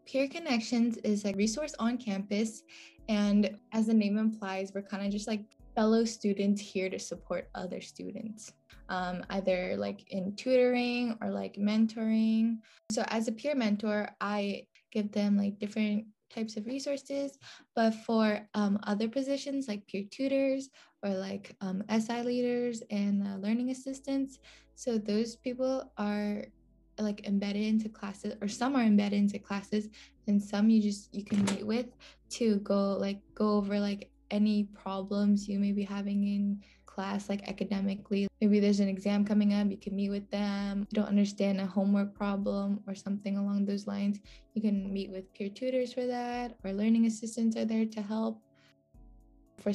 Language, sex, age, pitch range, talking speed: English, female, 10-29, 200-230 Hz, 165 wpm